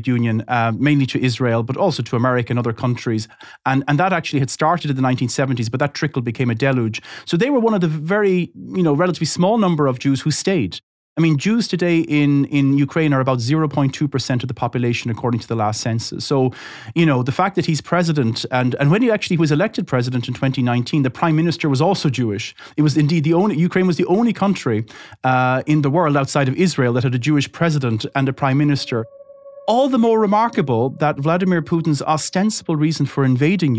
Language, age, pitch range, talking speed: English, 30-49, 125-170 Hz, 215 wpm